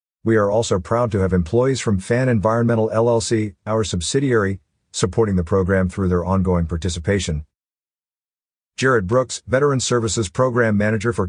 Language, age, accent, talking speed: English, 50-69, American, 145 wpm